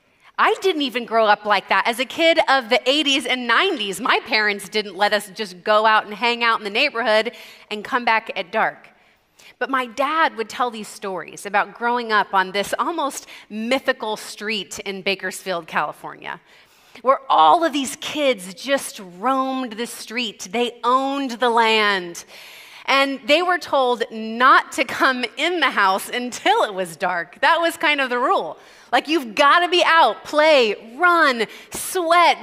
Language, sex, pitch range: English, female, 215-305 Hz